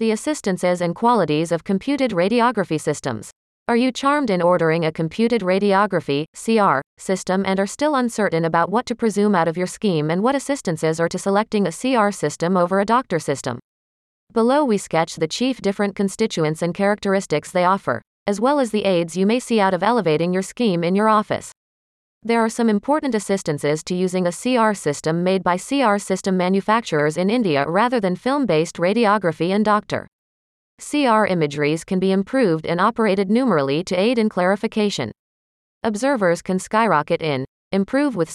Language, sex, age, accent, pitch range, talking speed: English, female, 40-59, American, 170-225 Hz, 175 wpm